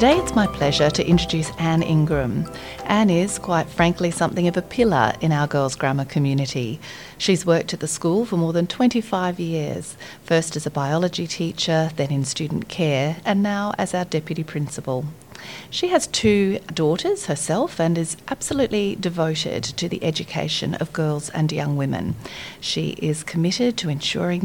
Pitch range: 150-185 Hz